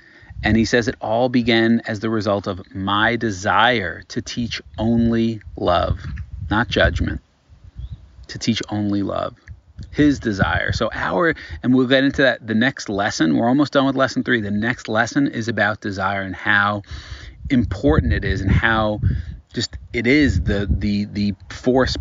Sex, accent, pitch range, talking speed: male, American, 95-115 Hz, 165 wpm